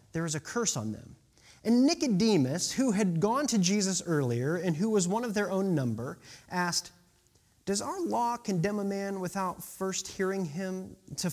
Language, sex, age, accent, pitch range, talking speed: English, male, 30-49, American, 130-205 Hz, 180 wpm